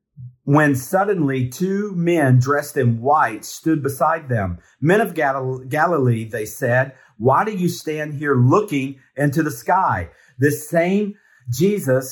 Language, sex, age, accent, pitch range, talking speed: English, male, 50-69, American, 125-160 Hz, 135 wpm